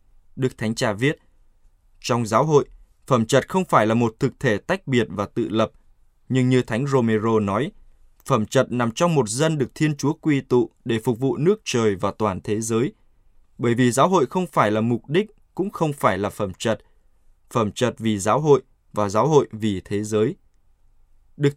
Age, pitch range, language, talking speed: 20-39, 110-140 Hz, Vietnamese, 200 wpm